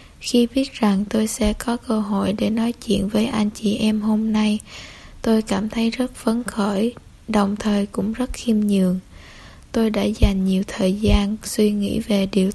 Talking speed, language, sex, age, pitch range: 185 wpm, Vietnamese, female, 10-29, 200-225 Hz